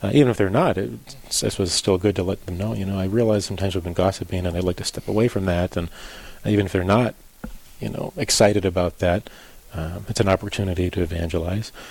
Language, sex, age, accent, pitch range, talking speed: English, male, 30-49, American, 95-115 Hz, 230 wpm